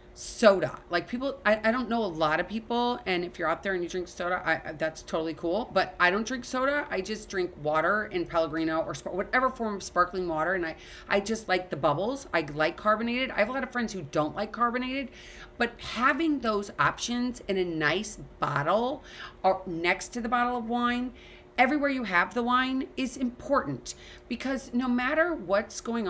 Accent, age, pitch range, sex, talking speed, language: American, 30-49, 170-235 Hz, female, 200 wpm, English